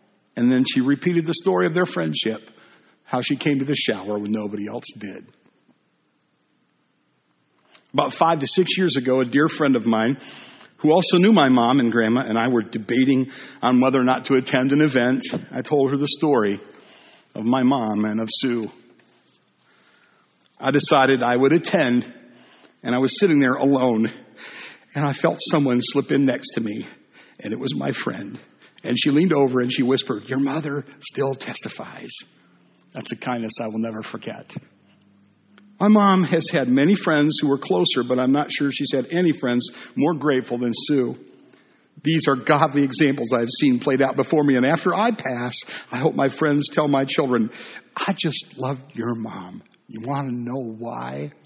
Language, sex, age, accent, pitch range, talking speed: English, male, 50-69, American, 120-150 Hz, 180 wpm